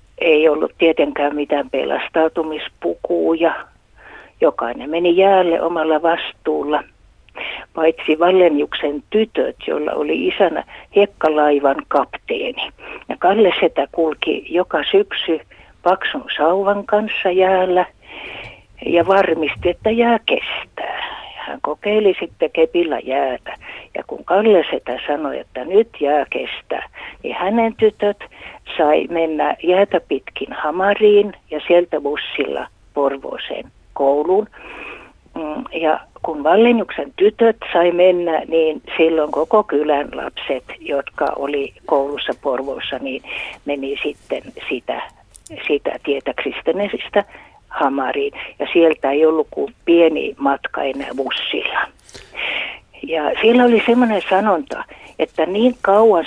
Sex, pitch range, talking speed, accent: female, 155-215 Hz, 105 wpm, native